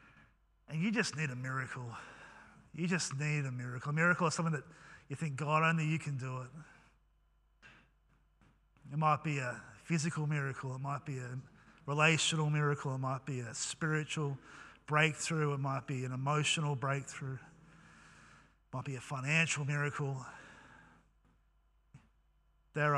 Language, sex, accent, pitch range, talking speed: English, male, Australian, 135-170 Hz, 145 wpm